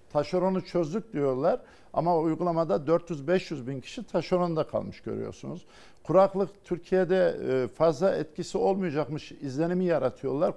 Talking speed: 100 wpm